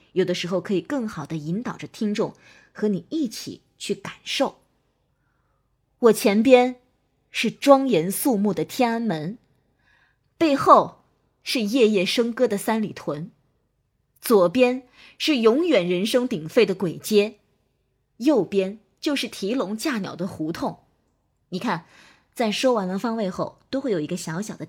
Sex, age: female, 20-39